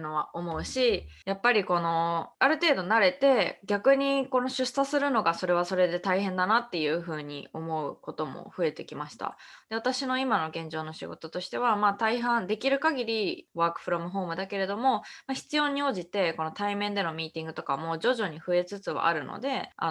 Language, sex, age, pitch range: Japanese, female, 20-39, 165-215 Hz